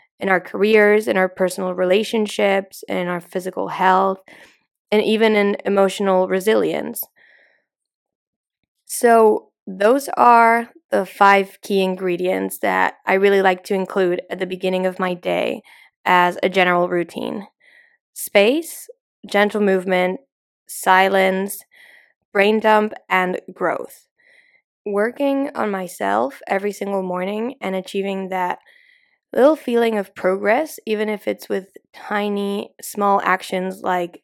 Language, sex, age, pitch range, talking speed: English, female, 10-29, 185-215 Hz, 120 wpm